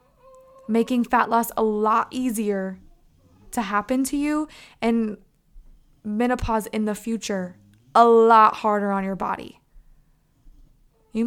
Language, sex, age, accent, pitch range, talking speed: English, female, 20-39, American, 205-245 Hz, 115 wpm